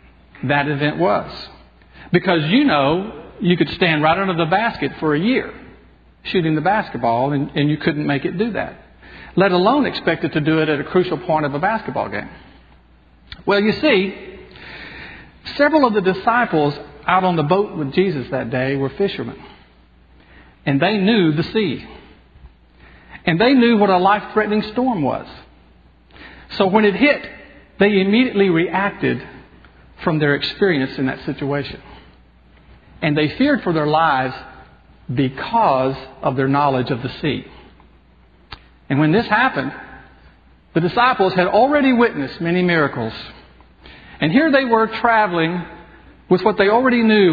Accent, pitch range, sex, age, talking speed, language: American, 125-190 Hz, male, 50-69, 150 wpm, English